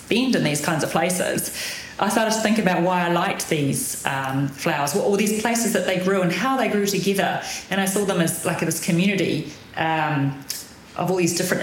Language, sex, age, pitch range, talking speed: English, female, 30-49, 170-215 Hz, 205 wpm